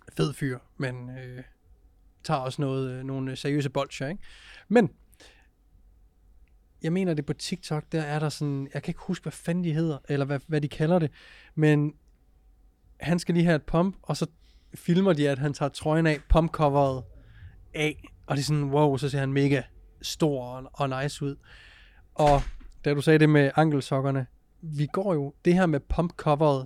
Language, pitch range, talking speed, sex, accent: Danish, 135-160 Hz, 185 wpm, male, native